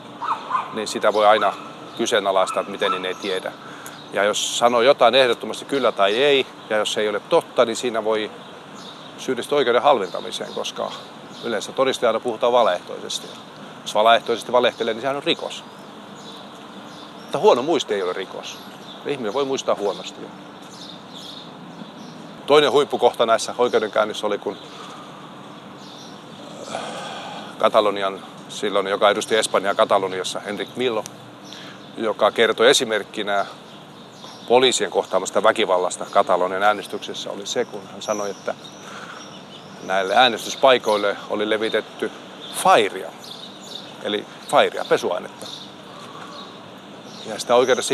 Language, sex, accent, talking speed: Finnish, male, native, 115 wpm